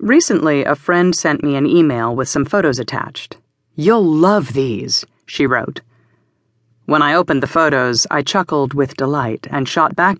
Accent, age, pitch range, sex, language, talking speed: American, 40-59, 130-175 Hz, female, English, 165 wpm